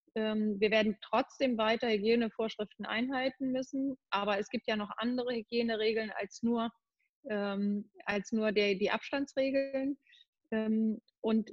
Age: 30-49